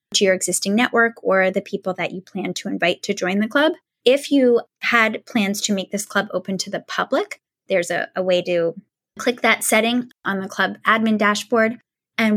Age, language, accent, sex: 10-29, English, American, female